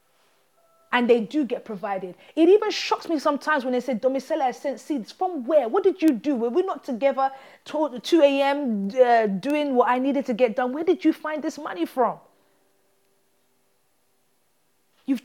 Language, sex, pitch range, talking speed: English, female, 215-295 Hz, 180 wpm